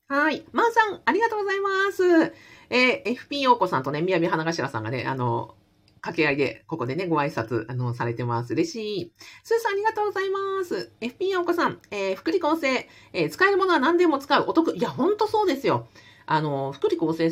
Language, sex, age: Japanese, female, 40-59